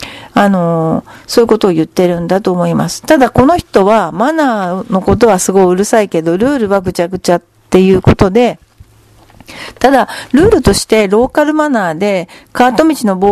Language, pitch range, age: Japanese, 185-245 Hz, 40-59